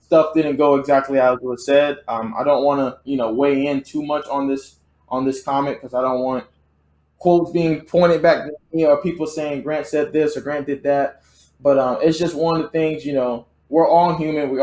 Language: English